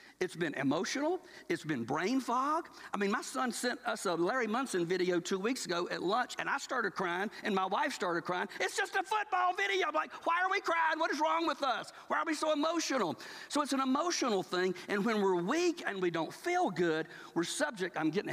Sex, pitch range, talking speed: male, 175-285 Hz, 230 wpm